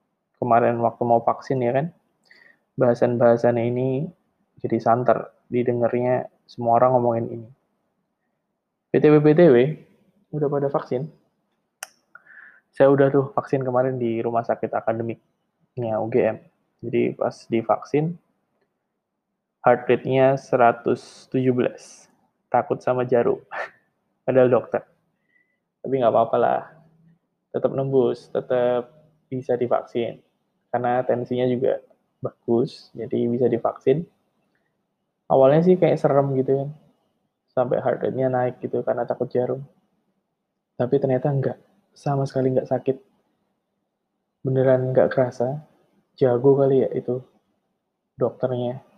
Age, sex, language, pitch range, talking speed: 20-39, male, Indonesian, 125-145 Hz, 105 wpm